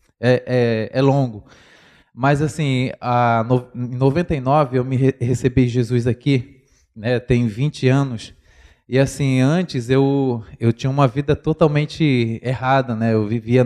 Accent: Brazilian